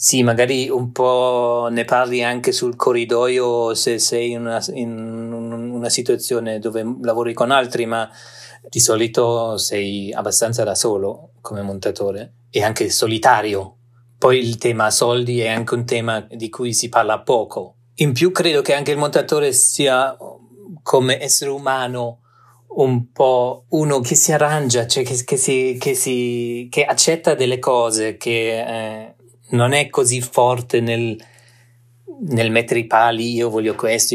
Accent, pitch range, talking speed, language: native, 115-130 Hz, 150 wpm, Italian